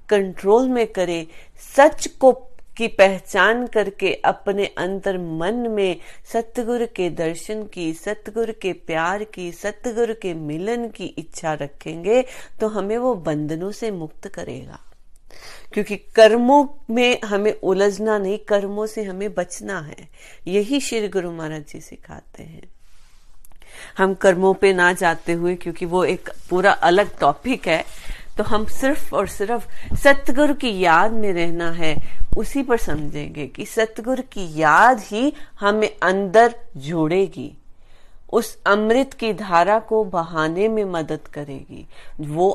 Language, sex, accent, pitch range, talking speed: Hindi, female, native, 170-220 Hz, 135 wpm